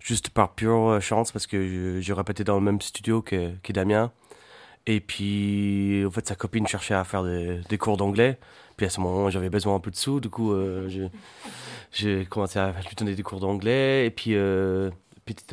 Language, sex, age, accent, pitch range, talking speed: French, male, 30-49, French, 100-115 Hz, 215 wpm